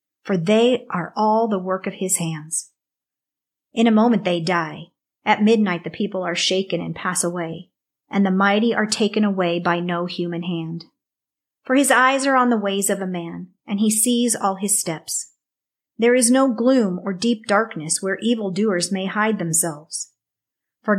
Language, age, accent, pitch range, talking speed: English, 40-59, American, 175-220 Hz, 180 wpm